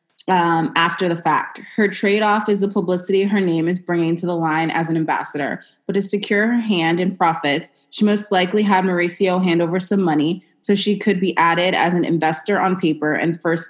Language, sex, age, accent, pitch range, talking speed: English, female, 20-39, American, 165-200 Hz, 205 wpm